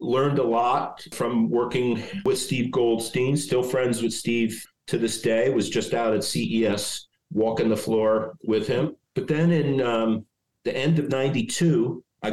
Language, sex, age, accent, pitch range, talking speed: English, male, 50-69, American, 110-145 Hz, 165 wpm